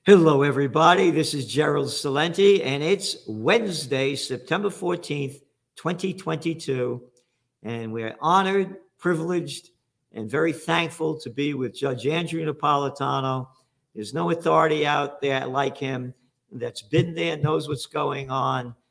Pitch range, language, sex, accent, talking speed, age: 120-155 Hz, English, male, American, 125 wpm, 50-69